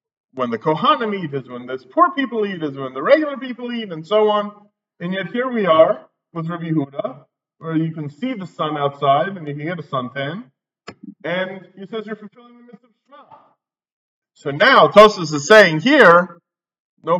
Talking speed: 195 wpm